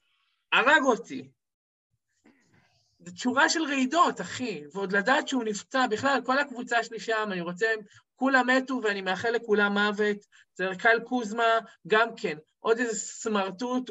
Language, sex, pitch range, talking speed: Hebrew, male, 180-255 Hz, 135 wpm